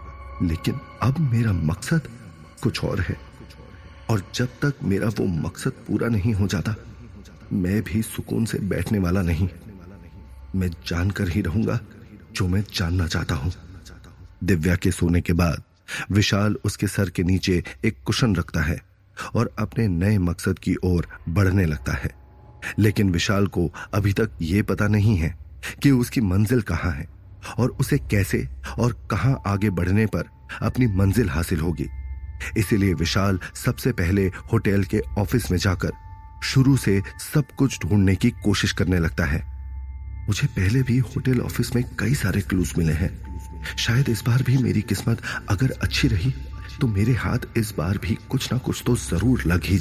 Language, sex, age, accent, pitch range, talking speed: Hindi, male, 30-49, native, 85-110 Hz, 160 wpm